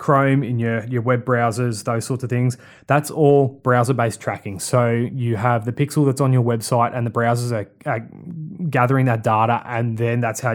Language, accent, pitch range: English, Australian, 115-135 Hz